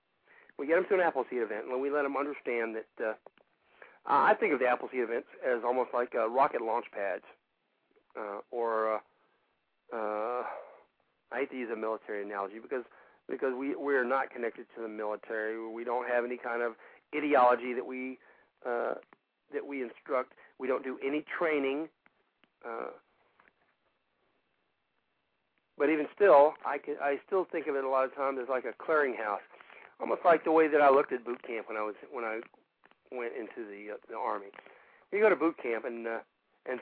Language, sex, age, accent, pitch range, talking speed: English, male, 50-69, American, 115-145 Hz, 185 wpm